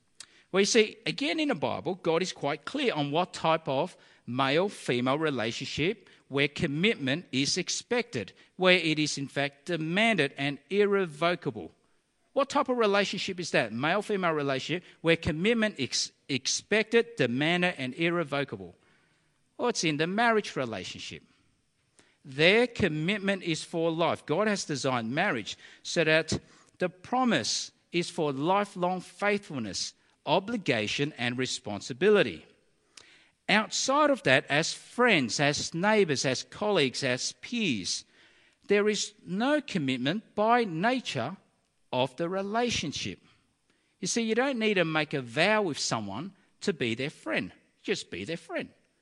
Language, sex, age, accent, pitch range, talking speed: English, male, 50-69, Australian, 140-215 Hz, 135 wpm